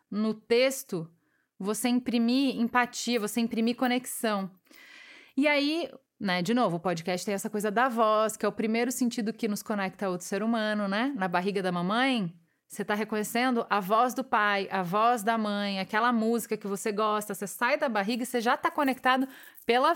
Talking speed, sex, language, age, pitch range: 190 wpm, female, Portuguese, 30-49, 195-255 Hz